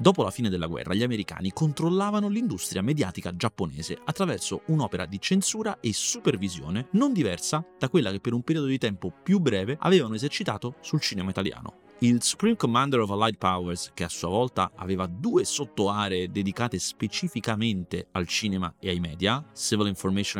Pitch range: 95-155 Hz